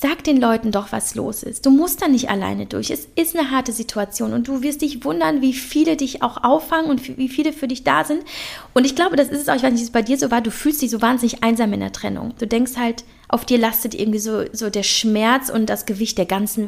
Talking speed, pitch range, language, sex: 265 wpm, 230-280 Hz, German, female